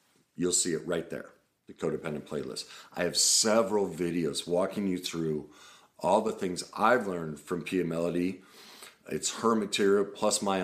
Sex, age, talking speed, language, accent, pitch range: male, 50-69, 160 wpm, English, American, 85-100 Hz